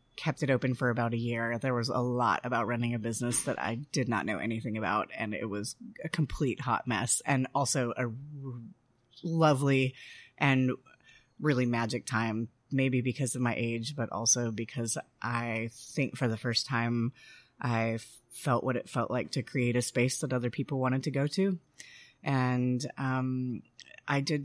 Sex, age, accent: female, 30-49, American